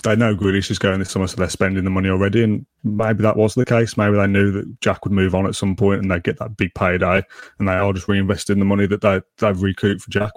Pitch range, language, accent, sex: 95-110 Hz, English, British, male